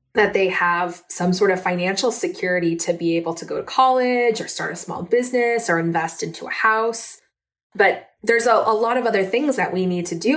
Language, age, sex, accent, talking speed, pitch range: English, 20-39, female, American, 220 wpm, 175-230 Hz